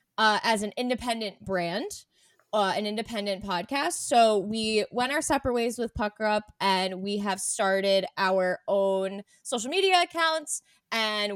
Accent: American